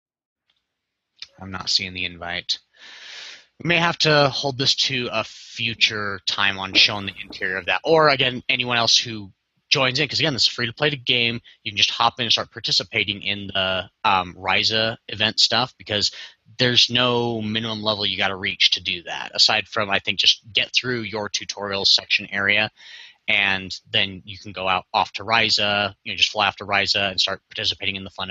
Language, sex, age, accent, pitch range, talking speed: English, male, 30-49, American, 100-120 Hz, 200 wpm